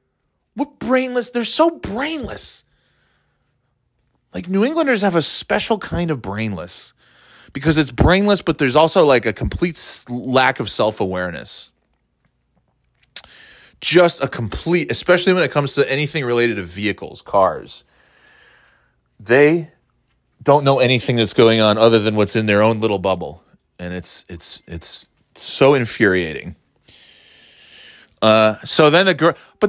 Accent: American